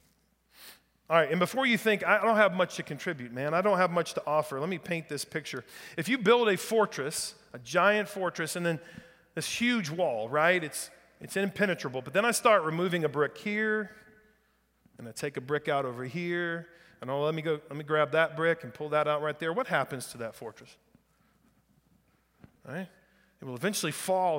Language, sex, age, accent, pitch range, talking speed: English, male, 40-59, American, 150-195 Hz, 200 wpm